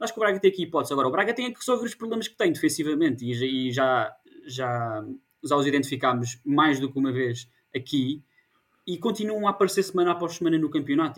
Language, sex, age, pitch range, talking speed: Portuguese, male, 20-39, 125-175 Hz, 210 wpm